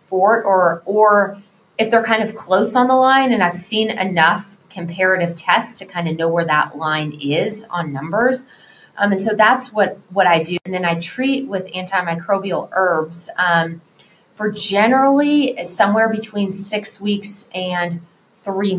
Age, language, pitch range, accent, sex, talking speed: 20-39, English, 170-220 Hz, American, female, 165 wpm